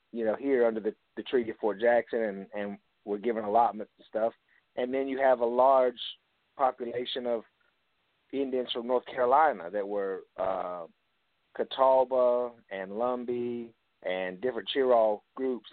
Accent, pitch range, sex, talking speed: American, 110-130 Hz, male, 145 wpm